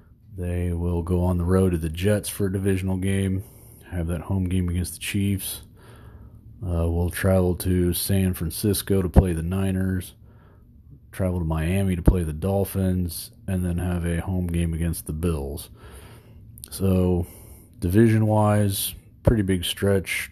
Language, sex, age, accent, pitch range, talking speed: English, male, 40-59, American, 85-100 Hz, 150 wpm